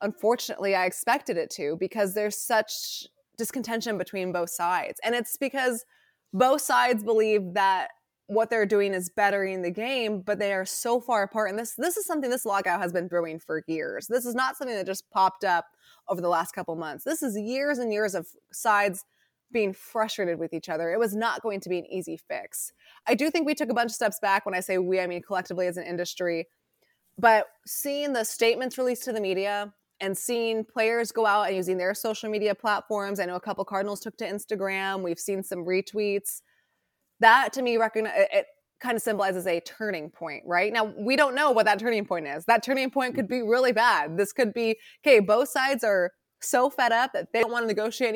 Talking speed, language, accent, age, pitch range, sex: 215 wpm, English, American, 20-39, 195-240 Hz, female